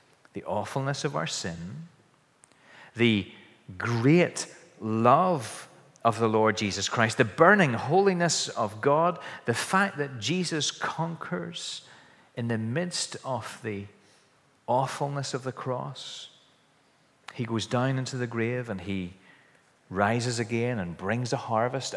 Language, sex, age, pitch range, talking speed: English, male, 40-59, 105-135 Hz, 125 wpm